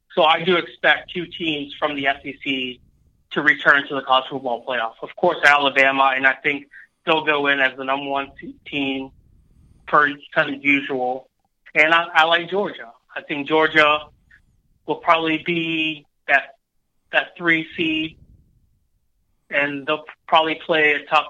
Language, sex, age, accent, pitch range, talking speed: English, male, 30-49, American, 135-165 Hz, 155 wpm